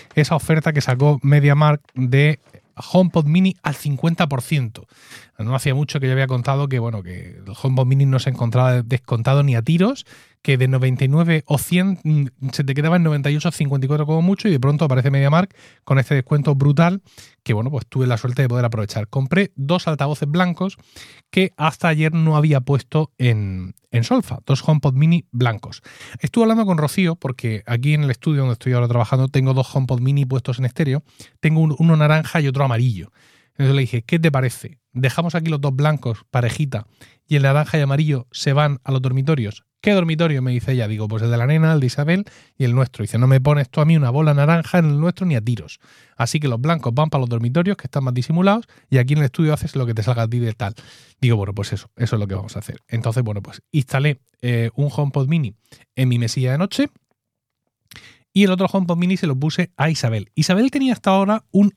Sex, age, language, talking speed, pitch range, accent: male, 30-49, Spanish, 220 wpm, 125-155 Hz, Spanish